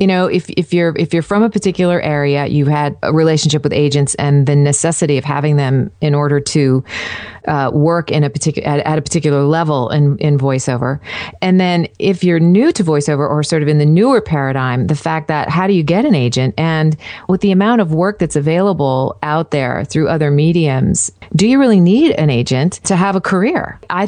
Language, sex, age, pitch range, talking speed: English, female, 40-59, 145-190 Hz, 215 wpm